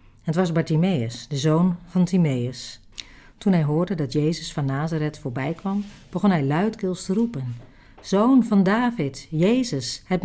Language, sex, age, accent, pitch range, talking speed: Dutch, female, 50-69, Dutch, 125-180 Hz, 150 wpm